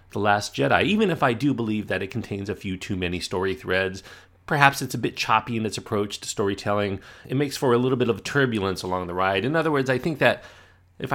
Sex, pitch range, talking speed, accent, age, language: male, 95-130 Hz, 240 wpm, American, 30-49, English